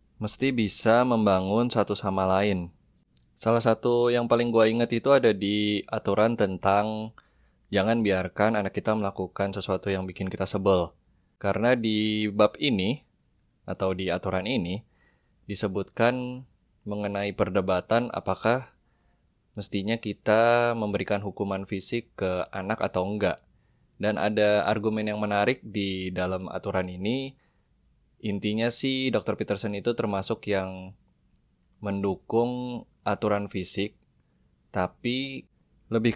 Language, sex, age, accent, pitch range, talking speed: Indonesian, male, 20-39, native, 95-115 Hz, 115 wpm